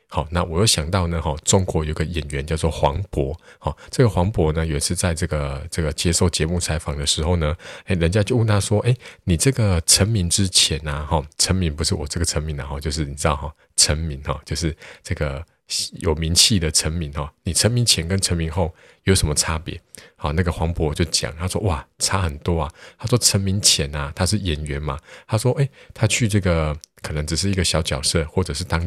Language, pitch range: Chinese, 75-95 Hz